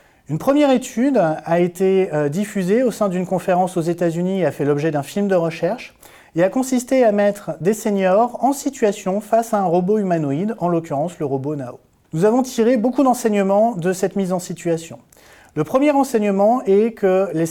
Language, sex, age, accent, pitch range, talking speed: French, male, 30-49, French, 160-220 Hz, 190 wpm